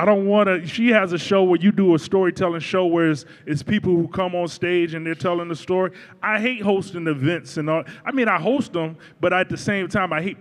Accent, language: American, English